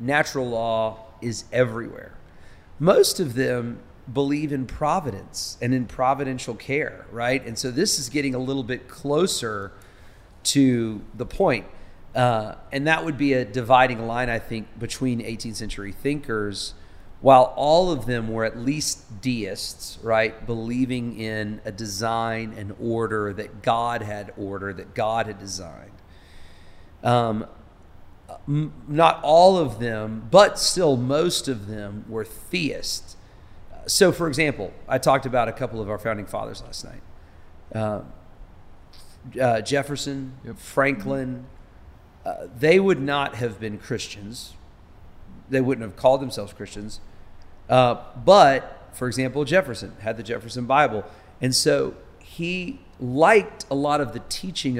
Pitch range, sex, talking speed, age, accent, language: 105-135 Hz, male, 135 wpm, 40-59, American, English